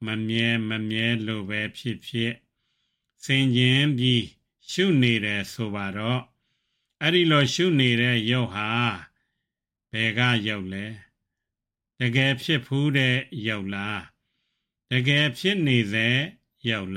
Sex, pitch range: male, 110-135 Hz